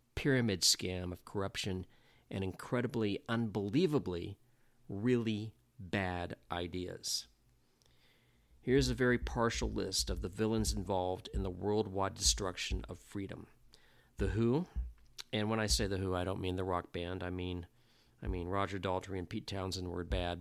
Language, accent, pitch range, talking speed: English, American, 90-115 Hz, 145 wpm